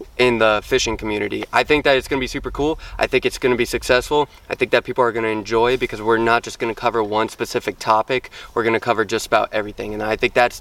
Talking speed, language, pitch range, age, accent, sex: 275 wpm, English, 105-125 Hz, 20-39, American, male